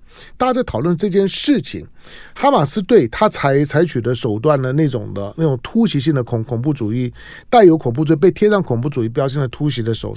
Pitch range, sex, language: 120-160 Hz, male, Chinese